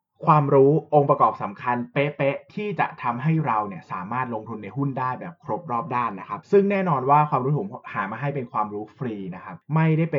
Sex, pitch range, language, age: male, 115-150 Hz, Thai, 20-39